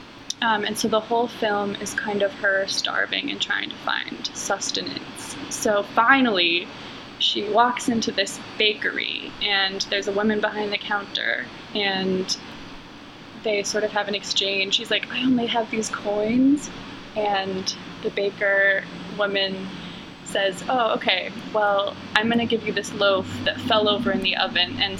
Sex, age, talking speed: female, 20-39, 160 wpm